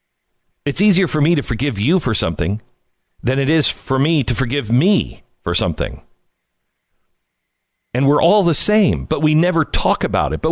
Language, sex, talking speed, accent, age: English, male, 175 wpm, American, 50-69